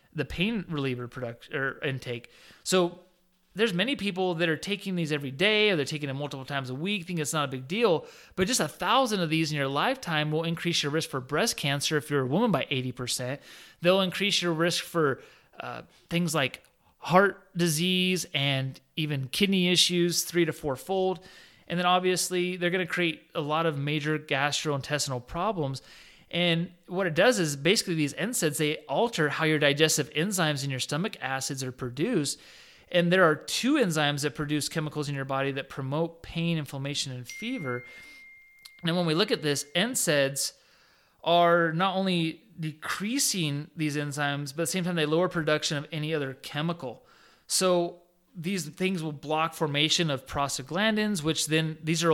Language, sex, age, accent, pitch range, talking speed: English, male, 30-49, American, 145-180 Hz, 180 wpm